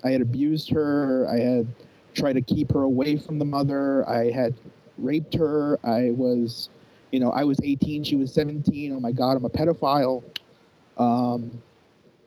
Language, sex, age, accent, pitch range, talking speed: English, male, 30-49, American, 130-155 Hz, 170 wpm